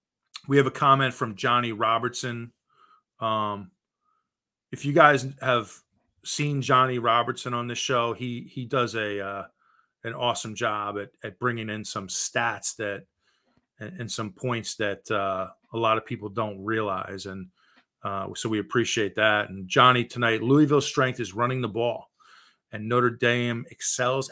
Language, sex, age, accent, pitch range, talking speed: English, male, 30-49, American, 105-130 Hz, 155 wpm